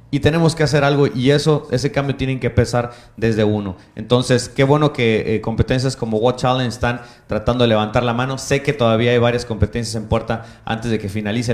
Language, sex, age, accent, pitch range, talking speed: Spanish, male, 30-49, Mexican, 110-130 Hz, 215 wpm